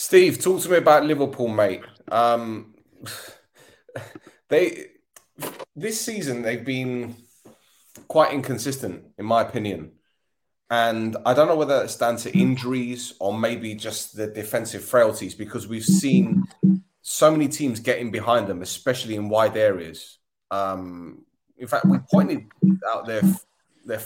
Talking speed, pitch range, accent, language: 135 wpm, 110-140 Hz, British, English